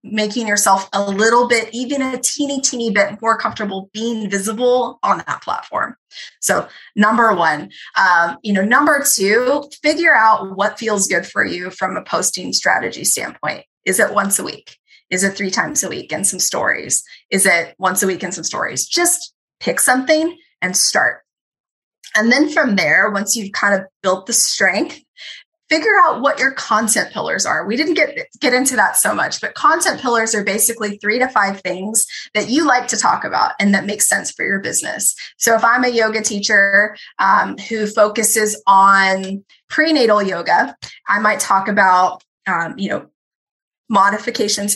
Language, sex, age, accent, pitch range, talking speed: English, female, 20-39, American, 195-250 Hz, 175 wpm